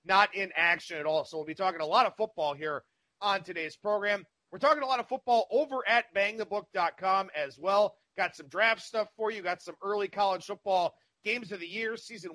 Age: 30-49